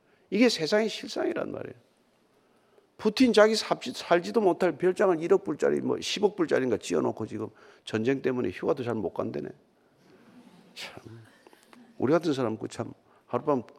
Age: 50-69